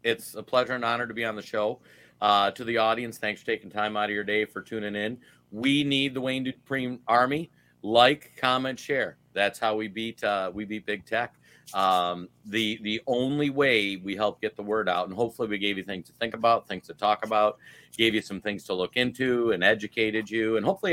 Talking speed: 225 wpm